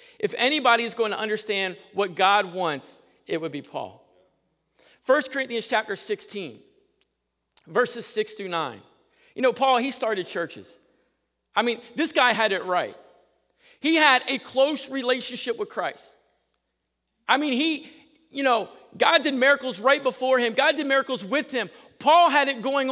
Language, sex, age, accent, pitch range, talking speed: English, male, 40-59, American, 195-275 Hz, 160 wpm